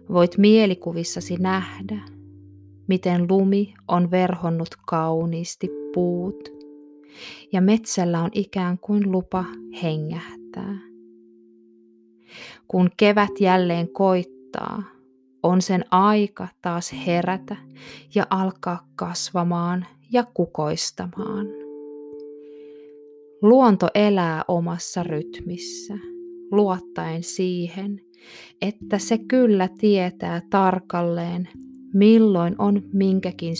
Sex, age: female, 20-39